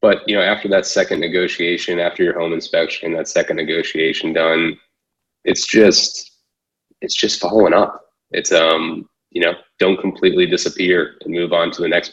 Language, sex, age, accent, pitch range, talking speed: English, male, 20-39, American, 85-95 Hz, 170 wpm